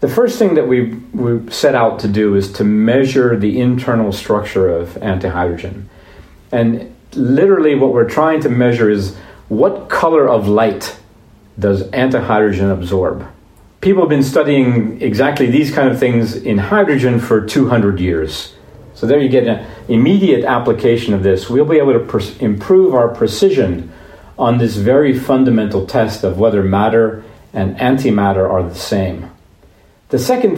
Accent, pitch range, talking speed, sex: American, 95-125 Hz, 155 wpm, male